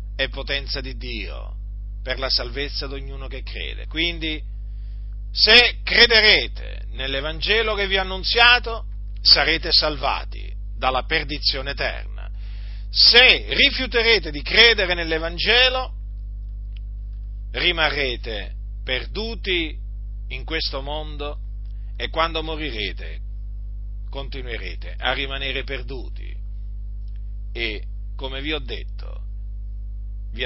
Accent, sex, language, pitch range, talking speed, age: native, male, Italian, 100-155 Hz, 95 wpm, 50-69